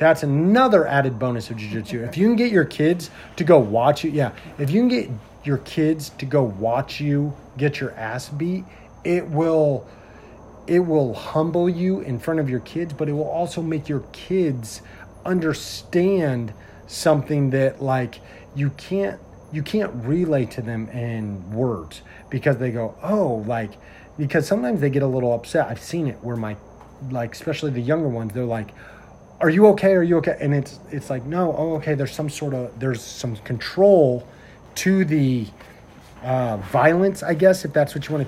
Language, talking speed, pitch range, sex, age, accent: English, 185 wpm, 125-160 Hz, male, 30-49, American